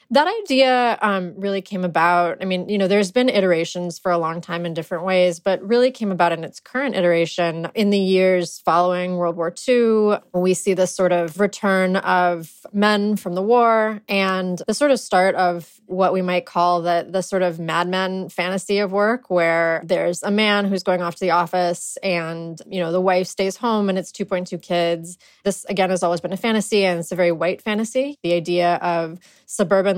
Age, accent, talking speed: 20-39, American, 205 wpm